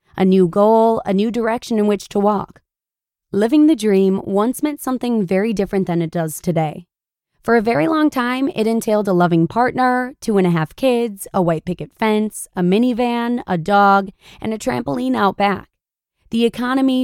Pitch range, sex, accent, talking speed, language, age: 185-240 Hz, female, American, 185 wpm, English, 20-39